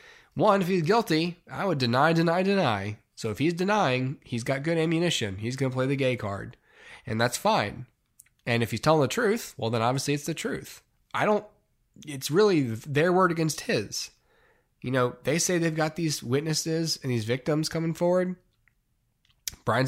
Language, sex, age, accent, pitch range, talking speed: English, male, 20-39, American, 120-165 Hz, 185 wpm